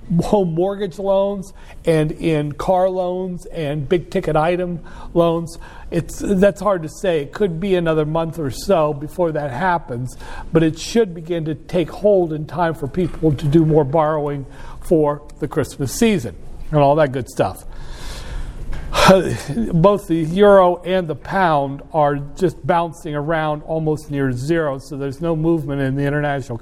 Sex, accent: male, American